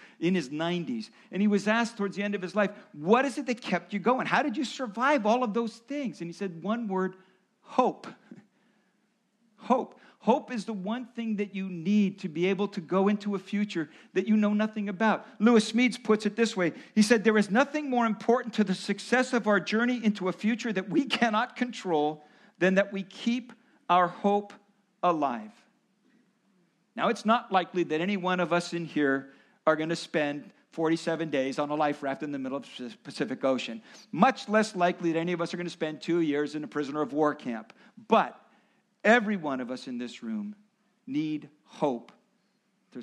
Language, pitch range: English, 170-225 Hz